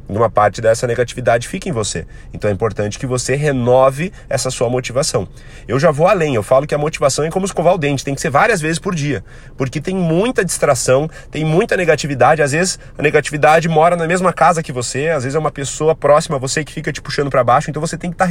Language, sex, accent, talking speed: Portuguese, male, Brazilian, 240 wpm